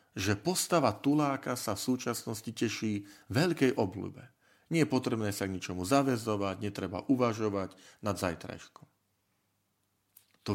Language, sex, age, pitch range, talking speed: Slovak, male, 40-59, 100-135 Hz, 120 wpm